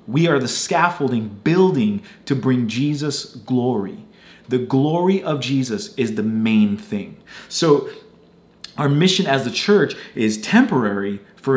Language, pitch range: English, 130-185 Hz